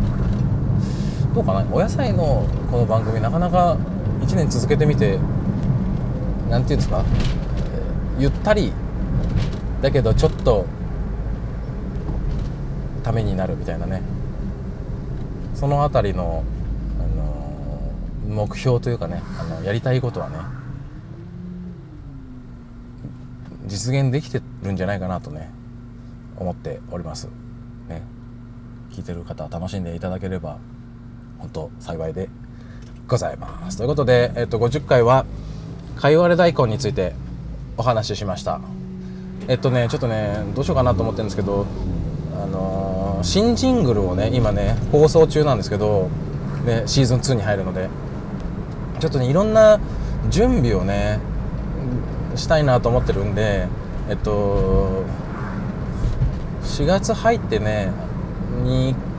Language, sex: Japanese, male